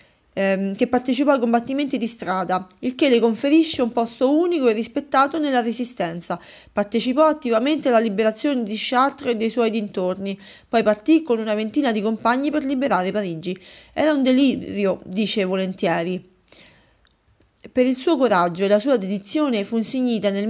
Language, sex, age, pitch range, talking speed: Italian, female, 30-49, 200-255 Hz, 155 wpm